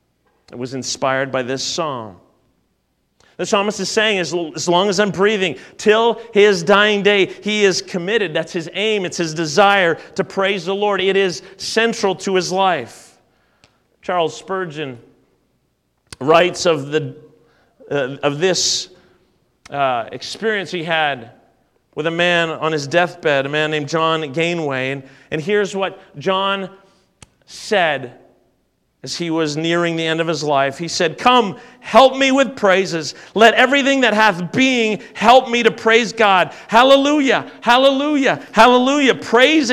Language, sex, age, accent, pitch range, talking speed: English, male, 40-59, American, 165-225 Hz, 145 wpm